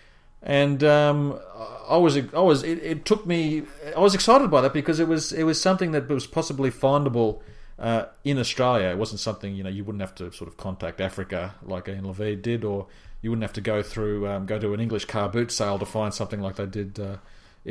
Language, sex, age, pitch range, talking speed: English, male, 40-59, 100-125 Hz, 220 wpm